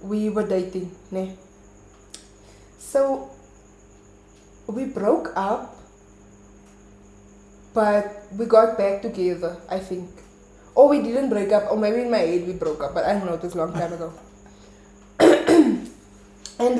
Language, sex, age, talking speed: English, female, 20-39, 135 wpm